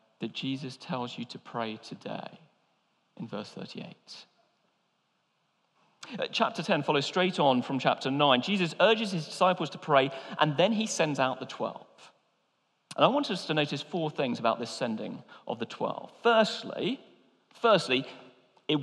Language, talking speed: English, 155 wpm